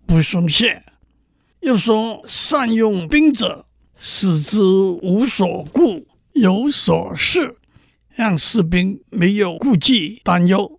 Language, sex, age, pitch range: Chinese, male, 60-79, 180-255 Hz